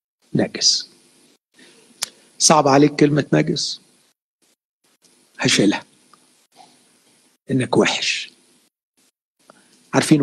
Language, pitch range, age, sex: Arabic, 125-155 Hz, 50-69, male